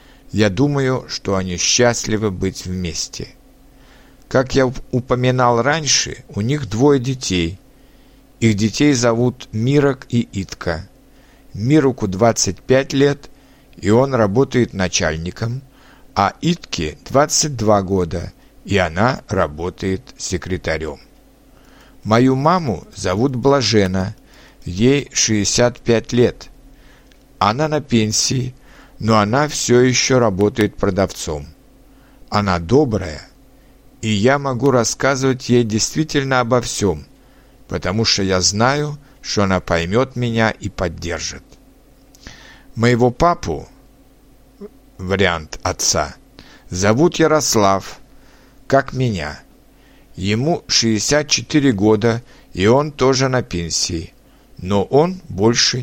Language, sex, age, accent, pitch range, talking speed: Russian, male, 60-79, native, 100-135 Hz, 100 wpm